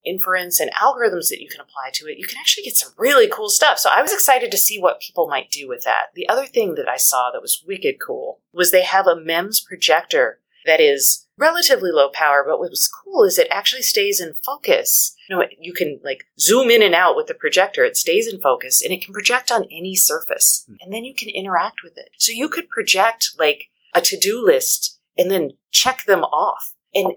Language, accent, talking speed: English, American, 230 wpm